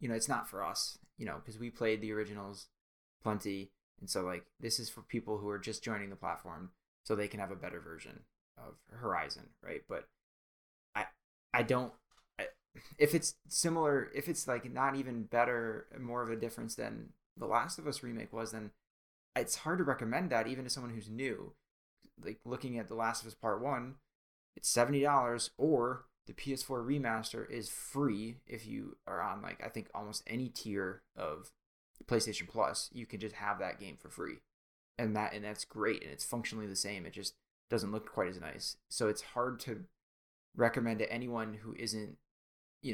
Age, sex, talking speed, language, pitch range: 20-39, male, 195 wpm, English, 105-125 Hz